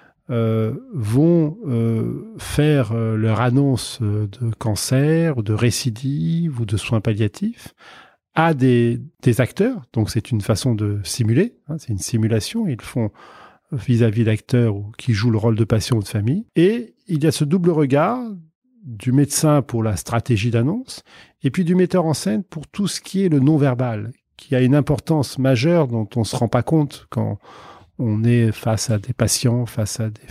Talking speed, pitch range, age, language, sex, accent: 180 wpm, 115-145 Hz, 40-59, French, male, French